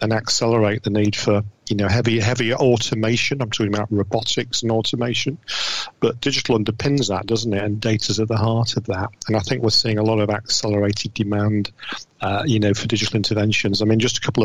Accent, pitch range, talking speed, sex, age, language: British, 105-120 Hz, 210 wpm, male, 40-59, English